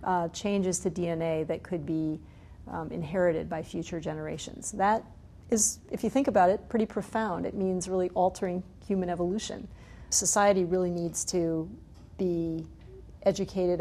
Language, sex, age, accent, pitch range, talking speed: English, female, 40-59, American, 165-195 Hz, 145 wpm